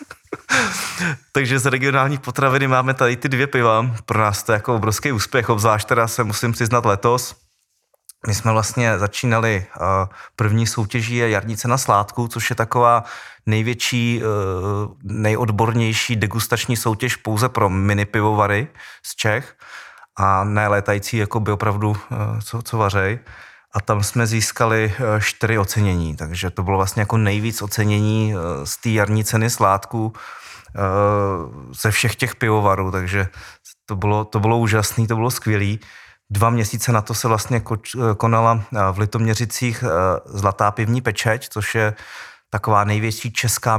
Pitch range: 105-115 Hz